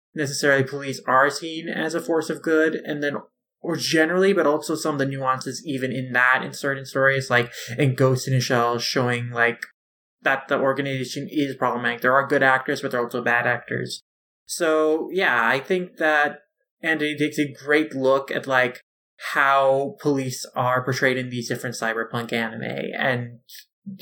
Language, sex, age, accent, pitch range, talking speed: English, male, 20-39, American, 125-155 Hz, 170 wpm